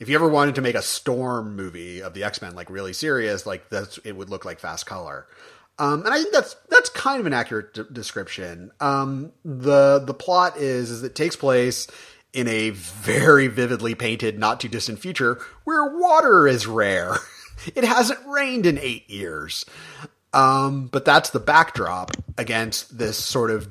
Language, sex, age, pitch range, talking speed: English, male, 30-49, 105-140 Hz, 180 wpm